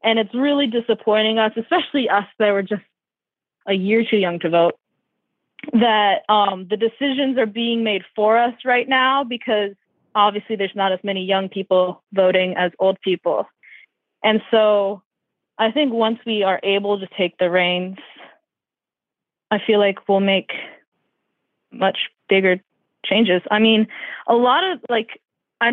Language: English